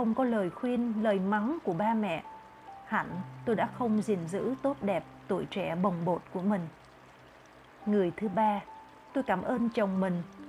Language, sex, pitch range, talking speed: Vietnamese, female, 190-235 Hz, 175 wpm